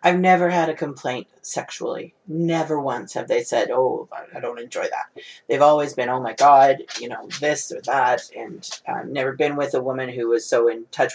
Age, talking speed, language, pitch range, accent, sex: 40-59, 215 wpm, English, 135-200 Hz, American, female